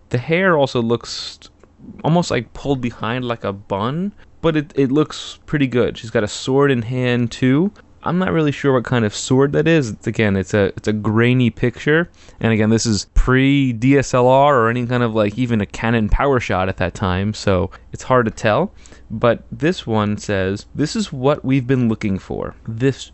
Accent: American